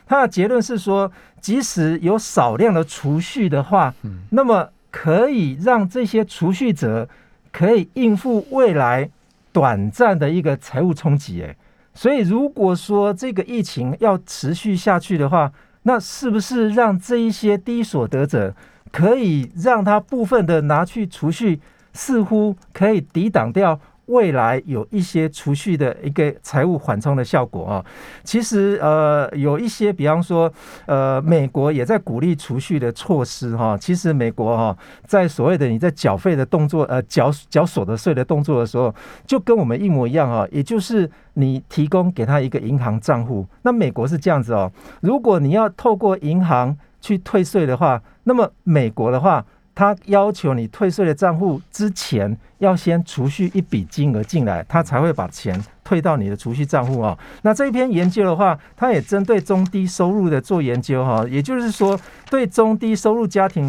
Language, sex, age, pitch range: Chinese, male, 50-69, 140-205 Hz